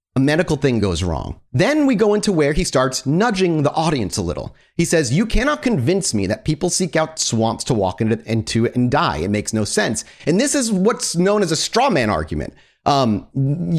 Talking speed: 210 wpm